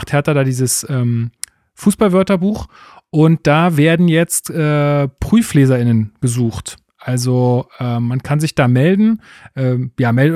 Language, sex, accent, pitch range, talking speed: German, male, German, 125-150 Hz, 125 wpm